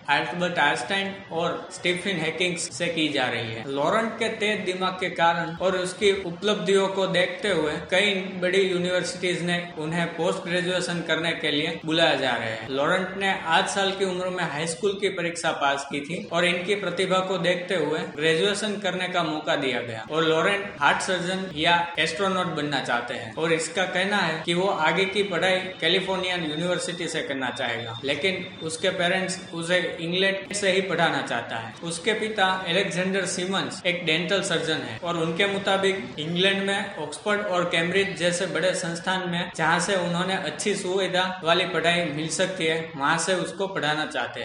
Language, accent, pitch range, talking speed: Hindi, native, 165-190 Hz, 180 wpm